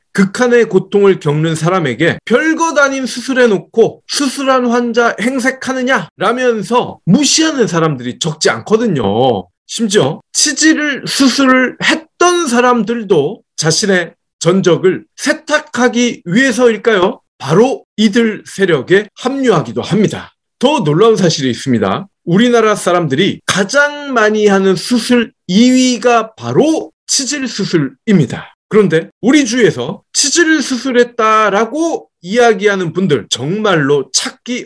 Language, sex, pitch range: Korean, male, 180-260 Hz